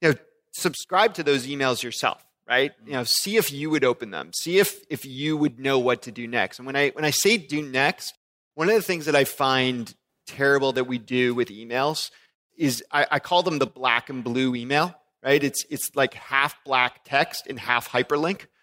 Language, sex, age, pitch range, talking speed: English, male, 30-49, 135-175 Hz, 215 wpm